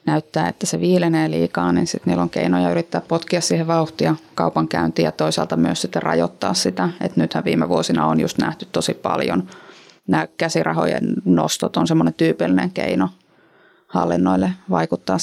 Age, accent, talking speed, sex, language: 30-49, native, 155 wpm, female, Finnish